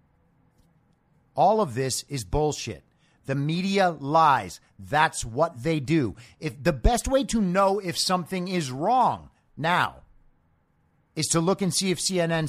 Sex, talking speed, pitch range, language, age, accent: male, 145 wpm, 125-175 Hz, English, 50-69, American